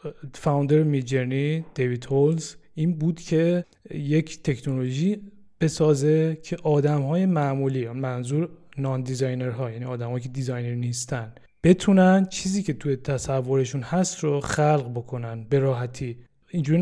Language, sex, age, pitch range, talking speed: Persian, male, 20-39, 130-165 Hz, 130 wpm